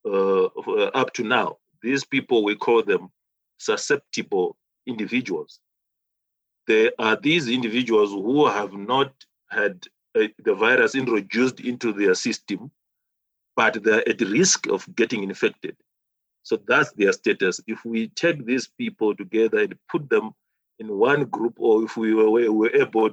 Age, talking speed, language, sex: 40-59, 145 wpm, English, male